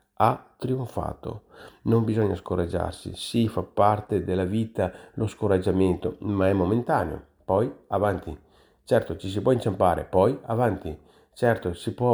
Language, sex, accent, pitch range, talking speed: Italian, male, native, 90-110 Hz, 140 wpm